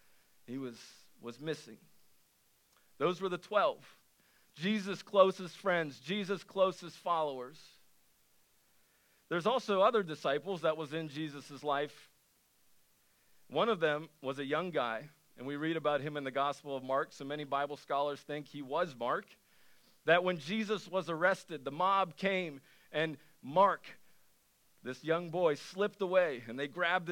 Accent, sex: American, male